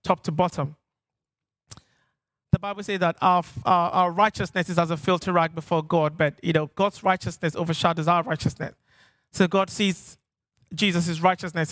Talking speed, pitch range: 160 wpm, 155-190 Hz